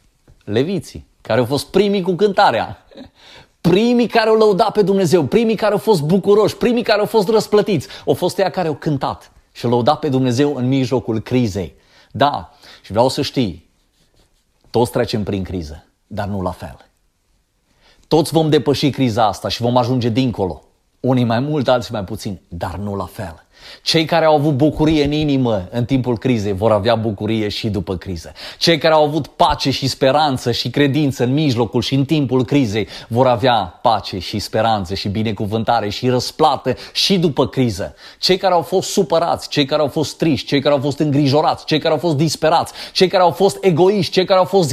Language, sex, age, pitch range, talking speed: Romanian, male, 30-49, 110-170 Hz, 190 wpm